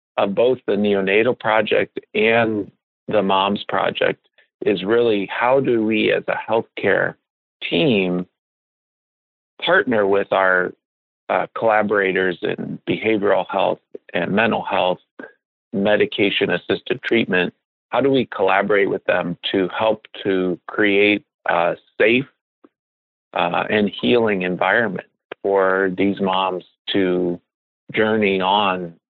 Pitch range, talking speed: 95-110 Hz, 110 wpm